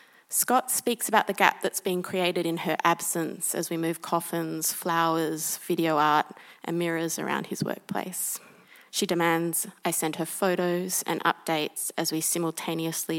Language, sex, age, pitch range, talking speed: English, female, 20-39, 165-185 Hz, 155 wpm